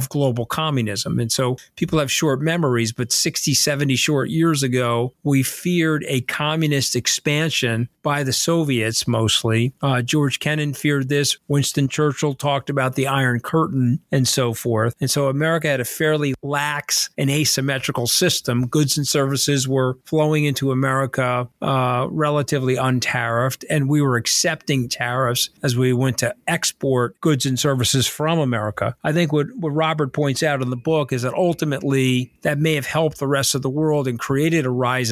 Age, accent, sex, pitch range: 40-59, American, male, 125-150 Hz